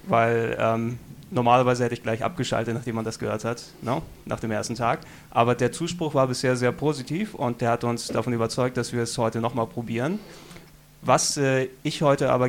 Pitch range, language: 115-135 Hz, German